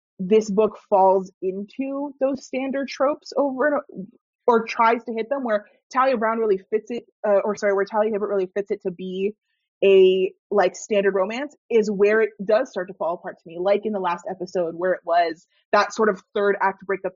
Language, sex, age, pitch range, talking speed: English, female, 30-49, 195-250 Hz, 205 wpm